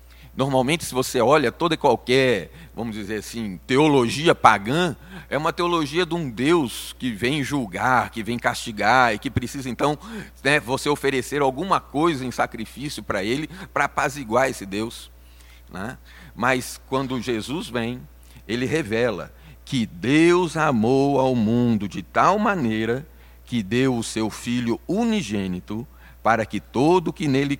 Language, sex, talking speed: Portuguese, male, 145 wpm